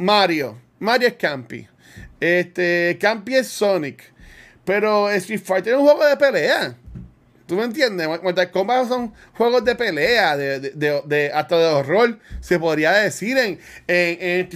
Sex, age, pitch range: male, 30-49, 170-230 Hz